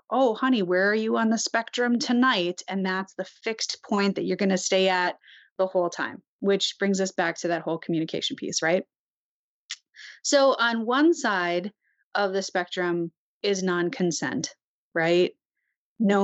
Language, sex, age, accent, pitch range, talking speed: English, female, 30-49, American, 180-215 Hz, 165 wpm